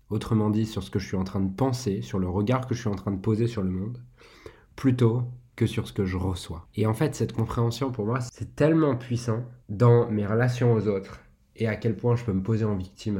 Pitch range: 95-120 Hz